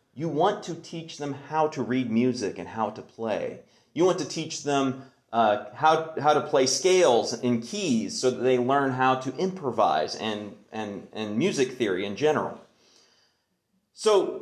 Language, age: English, 30-49